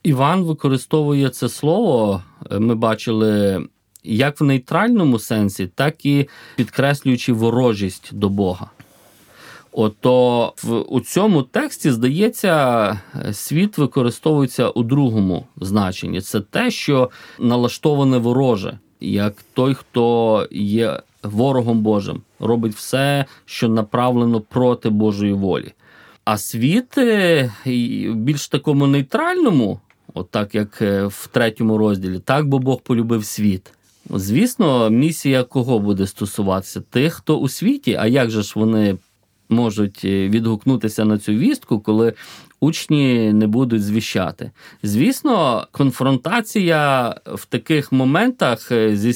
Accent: native